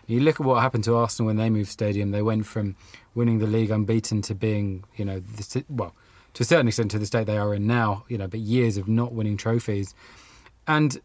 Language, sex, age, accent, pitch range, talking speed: English, male, 20-39, British, 105-130 Hz, 240 wpm